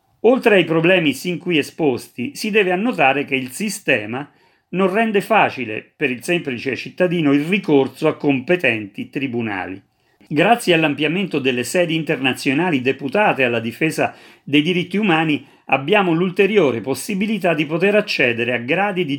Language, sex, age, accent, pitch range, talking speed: Italian, male, 40-59, native, 135-195 Hz, 140 wpm